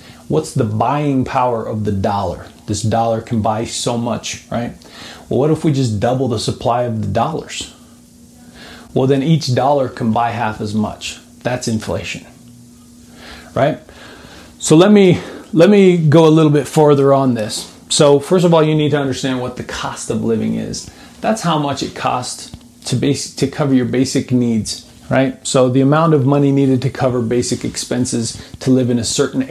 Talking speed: 185 wpm